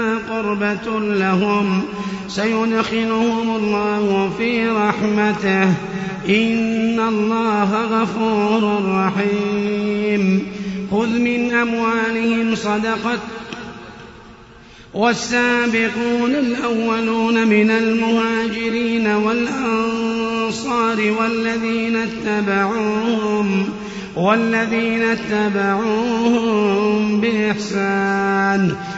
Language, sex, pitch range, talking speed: Arabic, male, 205-230 Hz, 45 wpm